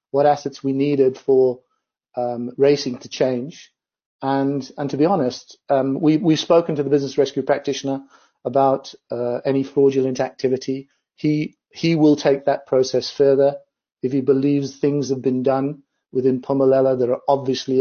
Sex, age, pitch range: male, 40-59, 130-145 Hz